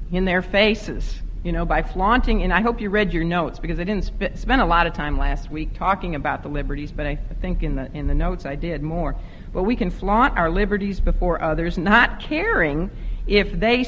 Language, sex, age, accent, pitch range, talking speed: English, female, 60-79, American, 150-205 Hz, 215 wpm